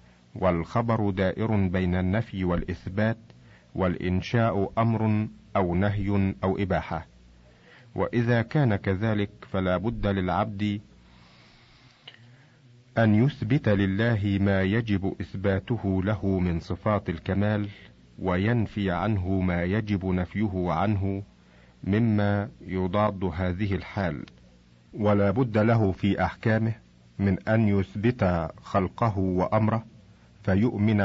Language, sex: Arabic, male